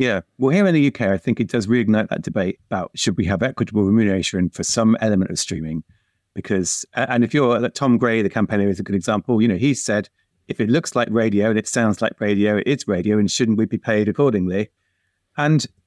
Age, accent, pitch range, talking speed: 30-49, British, 105-130 Hz, 225 wpm